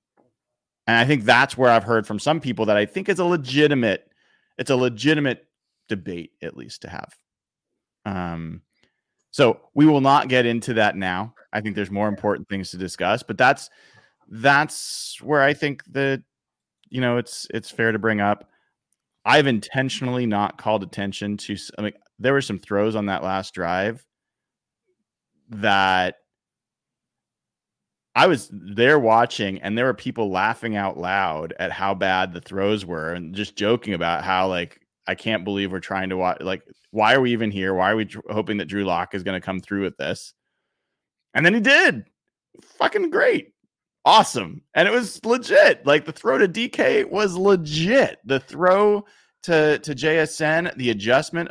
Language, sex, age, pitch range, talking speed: English, male, 30-49, 100-155 Hz, 170 wpm